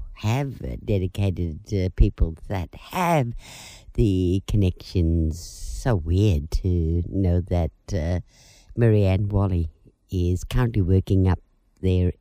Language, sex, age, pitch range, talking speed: English, female, 50-69, 90-130 Hz, 110 wpm